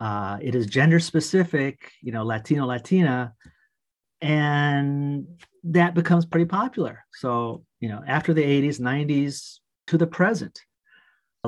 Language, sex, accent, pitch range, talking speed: English, male, American, 125-170 Hz, 130 wpm